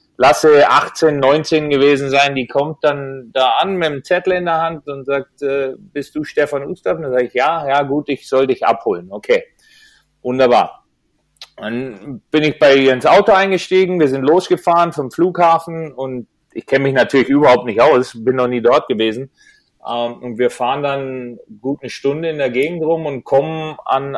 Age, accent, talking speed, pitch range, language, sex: 30-49, German, 185 wpm, 125-155 Hz, English, male